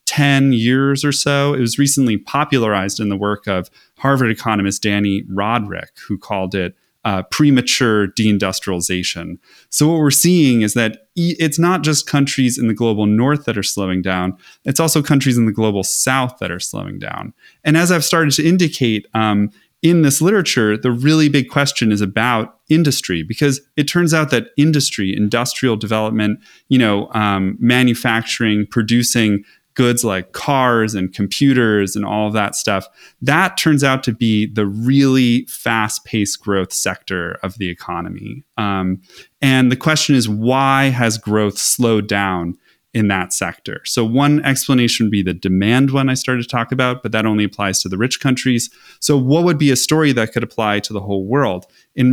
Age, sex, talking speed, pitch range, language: 30-49, male, 175 wpm, 100-135 Hz, English